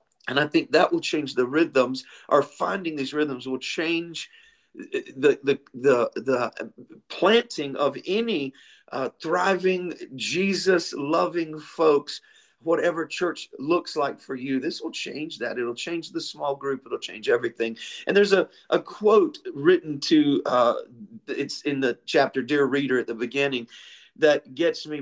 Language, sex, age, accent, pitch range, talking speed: English, male, 40-59, American, 140-215 Hz, 150 wpm